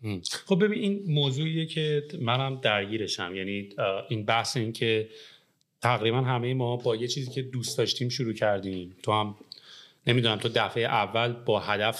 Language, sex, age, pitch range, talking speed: English, male, 30-49, 110-135 Hz, 155 wpm